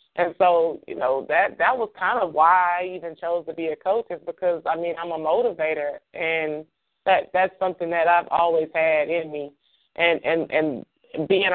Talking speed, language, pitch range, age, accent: 195 wpm, English, 160-180 Hz, 20-39, American